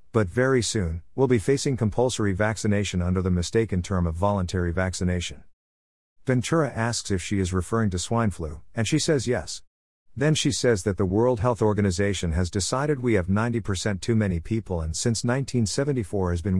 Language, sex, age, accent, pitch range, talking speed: English, male, 50-69, American, 90-120 Hz, 175 wpm